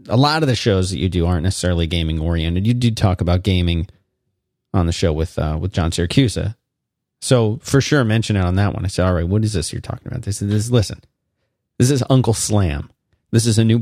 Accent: American